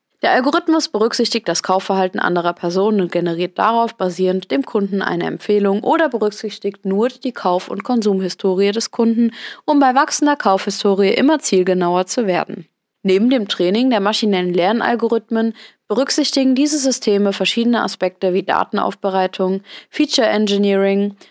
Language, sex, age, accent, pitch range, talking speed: German, female, 20-39, German, 190-235 Hz, 130 wpm